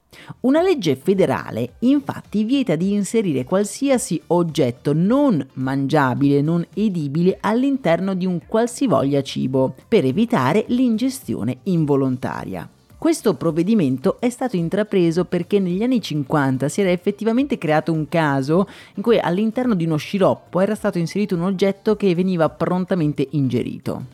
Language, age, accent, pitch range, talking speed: Italian, 40-59, native, 140-205 Hz, 130 wpm